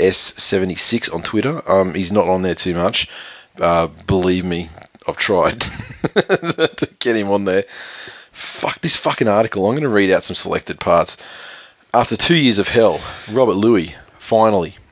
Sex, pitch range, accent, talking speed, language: male, 95-115 Hz, Australian, 160 wpm, English